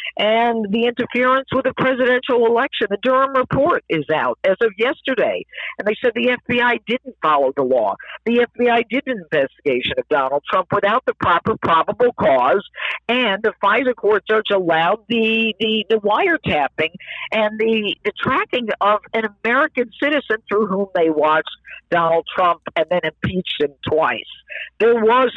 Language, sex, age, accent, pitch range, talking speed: English, female, 50-69, American, 200-255 Hz, 160 wpm